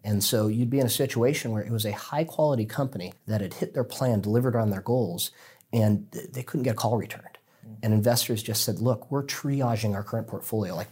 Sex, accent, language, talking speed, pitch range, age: male, American, English, 225 wpm, 105-125 Hz, 30-49